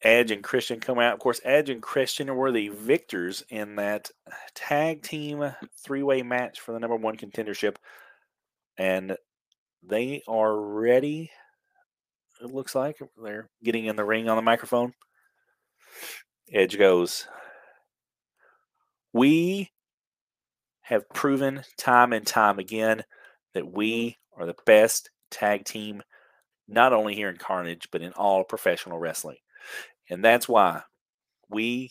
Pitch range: 105-130 Hz